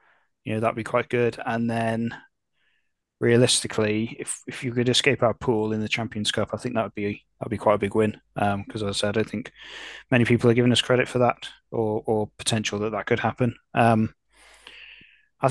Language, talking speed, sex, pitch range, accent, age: English, 215 wpm, male, 110-135 Hz, British, 20-39